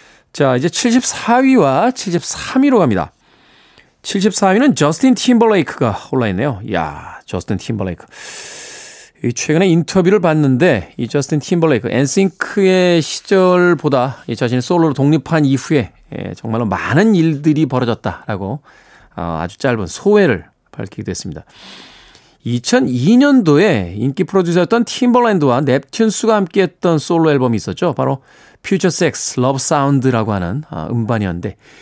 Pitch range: 125-200 Hz